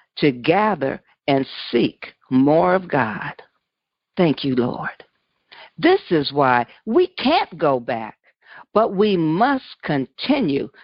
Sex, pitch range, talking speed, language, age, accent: female, 140-235 Hz, 115 wpm, English, 50-69, American